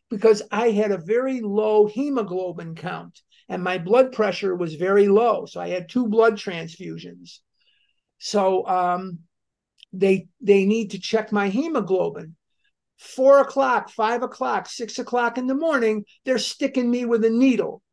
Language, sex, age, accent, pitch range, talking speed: English, male, 50-69, American, 190-235 Hz, 150 wpm